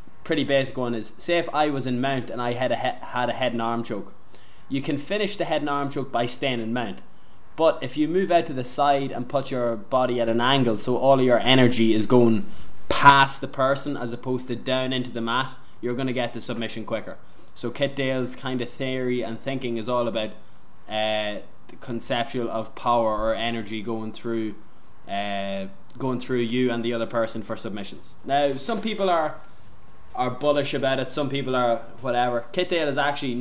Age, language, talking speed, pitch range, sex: 20-39, English, 210 wpm, 115-135 Hz, male